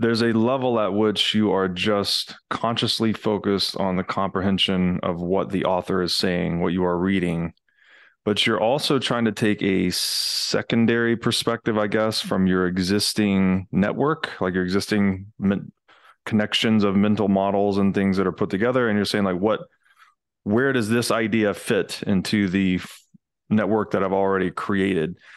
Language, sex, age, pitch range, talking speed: English, male, 20-39, 95-115 Hz, 165 wpm